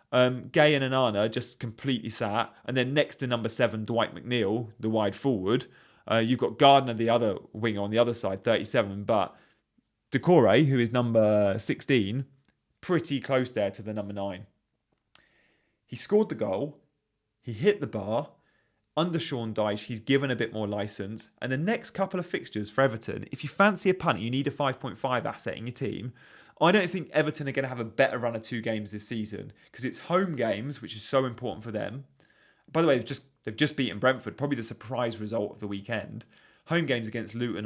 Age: 30-49